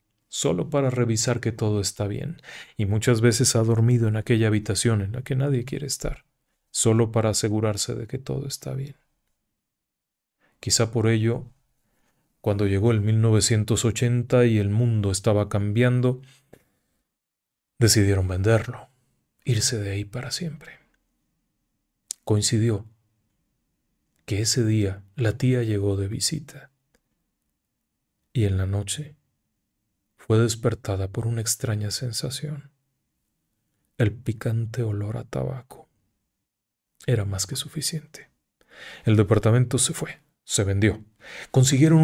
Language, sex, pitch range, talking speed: Spanish, male, 105-130 Hz, 120 wpm